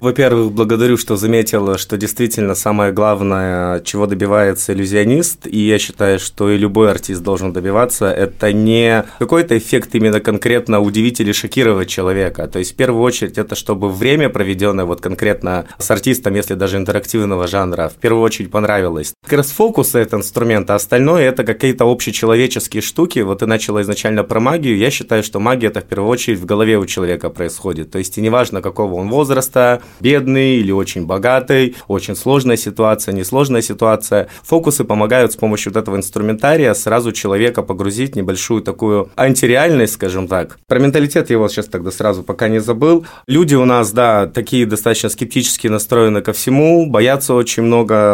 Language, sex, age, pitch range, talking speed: Russian, male, 20-39, 100-120 Hz, 170 wpm